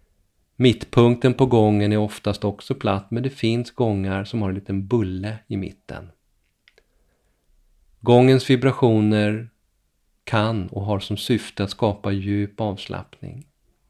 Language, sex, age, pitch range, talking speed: Swedish, male, 40-59, 100-115 Hz, 125 wpm